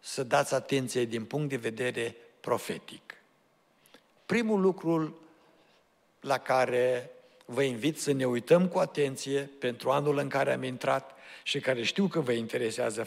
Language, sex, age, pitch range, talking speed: Romanian, male, 60-79, 120-155 Hz, 140 wpm